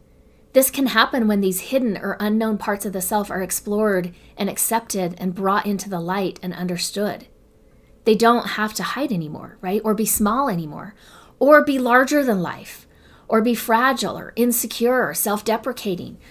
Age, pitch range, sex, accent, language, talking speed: 30-49, 190-235 Hz, female, American, English, 170 wpm